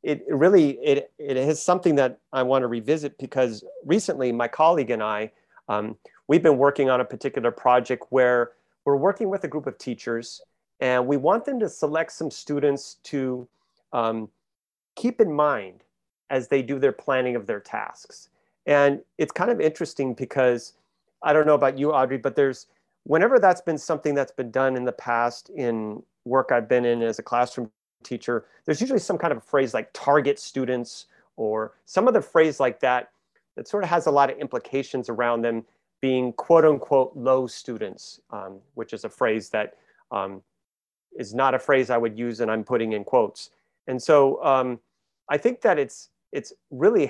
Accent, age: American, 40-59